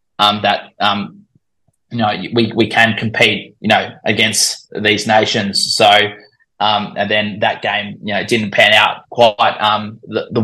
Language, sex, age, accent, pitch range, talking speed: English, male, 20-39, Australian, 105-110 Hz, 170 wpm